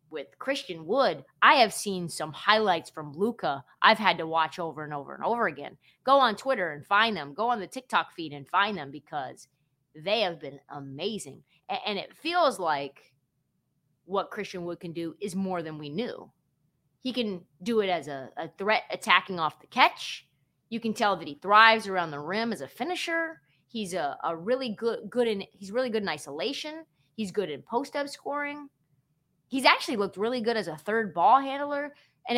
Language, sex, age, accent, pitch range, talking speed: English, female, 20-39, American, 165-255 Hz, 195 wpm